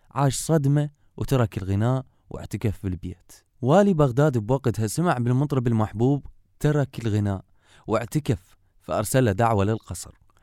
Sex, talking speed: male, 105 wpm